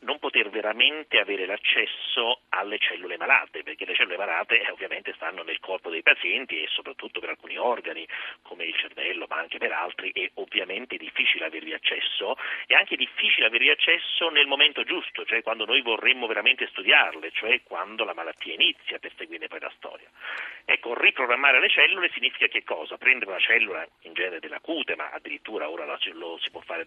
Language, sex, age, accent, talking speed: Italian, male, 40-59, native, 185 wpm